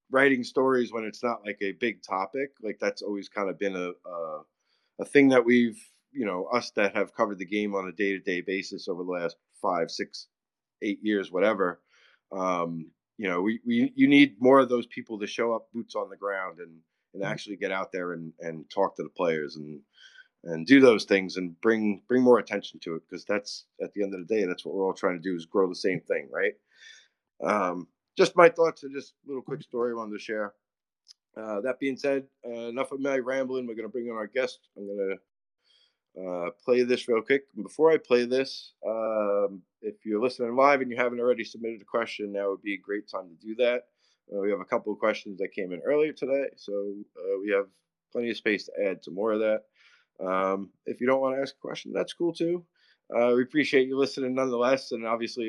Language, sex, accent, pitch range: English, male, American, 100-130 Hz